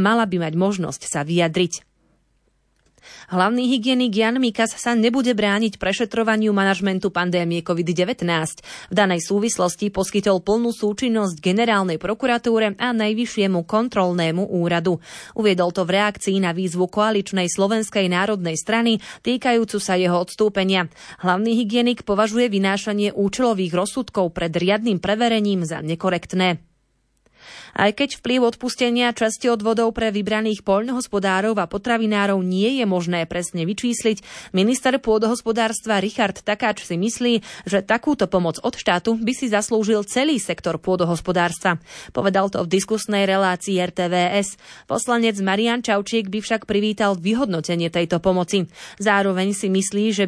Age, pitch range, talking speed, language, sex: 20-39, 185-225 Hz, 125 wpm, Slovak, female